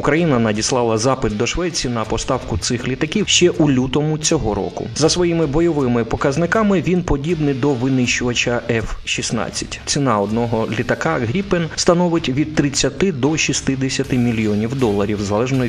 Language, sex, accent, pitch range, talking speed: Ukrainian, male, native, 115-155 Hz, 135 wpm